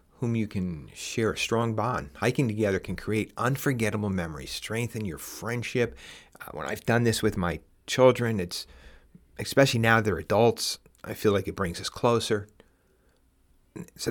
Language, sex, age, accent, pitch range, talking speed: English, male, 40-59, American, 95-120 Hz, 155 wpm